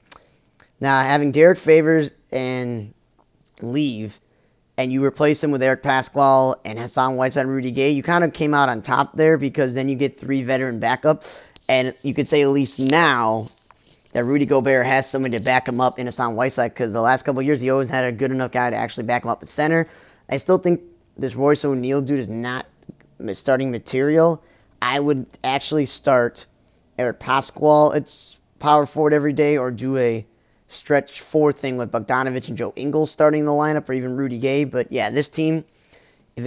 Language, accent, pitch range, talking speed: English, American, 120-145 Hz, 195 wpm